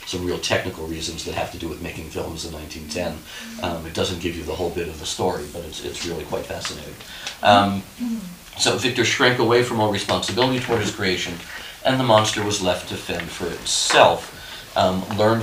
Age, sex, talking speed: 40-59, male, 200 wpm